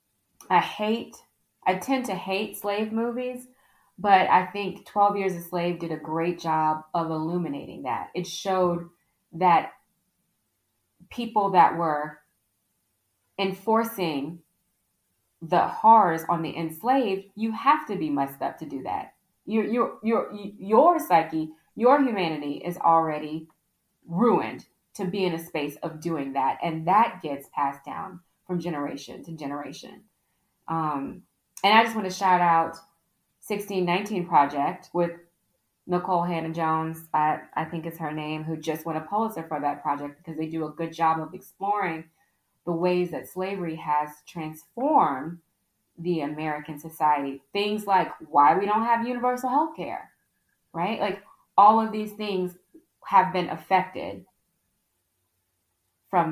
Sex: female